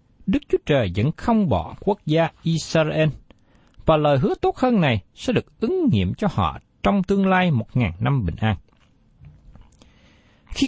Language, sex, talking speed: Vietnamese, male, 170 wpm